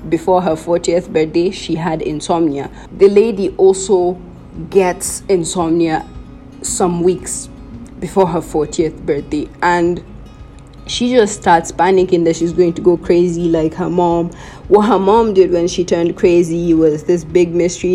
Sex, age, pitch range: female, 30-49, 165-195 Hz